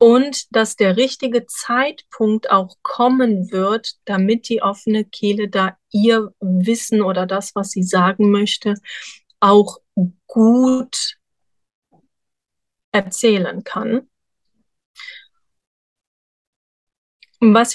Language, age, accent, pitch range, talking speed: German, 30-49, German, 195-235 Hz, 90 wpm